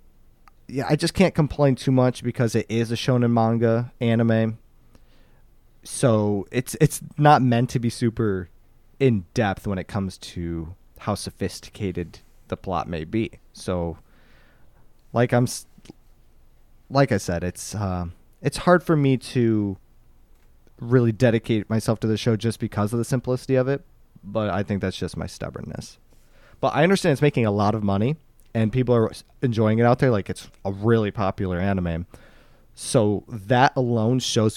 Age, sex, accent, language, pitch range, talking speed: 20-39, male, American, English, 100-125 Hz, 160 wpm